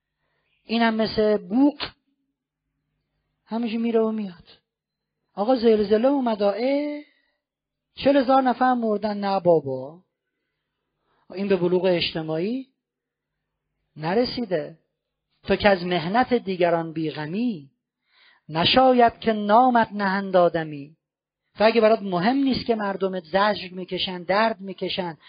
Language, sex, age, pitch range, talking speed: Persian, male, 40-59, 170-225 Hz, 100 wpm